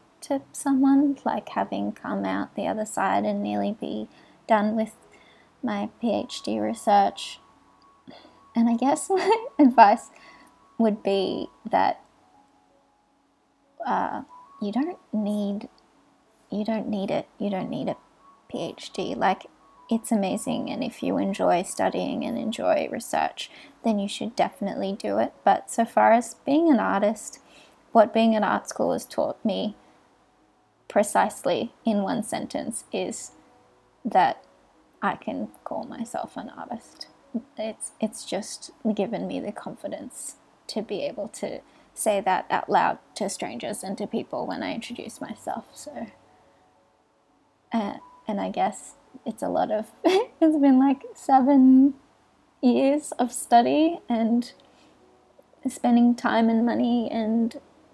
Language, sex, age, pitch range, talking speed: English, female, 20-39, 210-275 Hz, 135 wpm